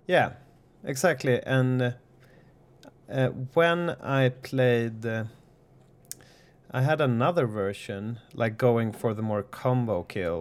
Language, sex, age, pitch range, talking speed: English, male, 30-49, 115-140 Hz, 115 wpm